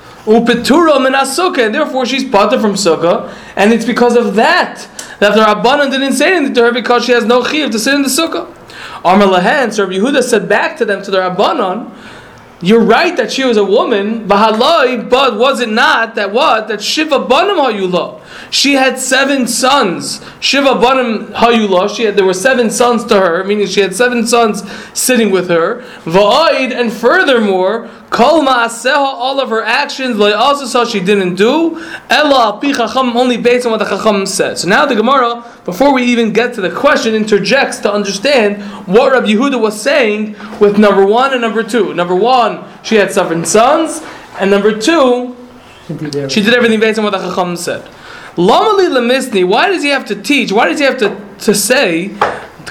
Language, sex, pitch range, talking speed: Polish, male, 205-260 Hz, 180 wpm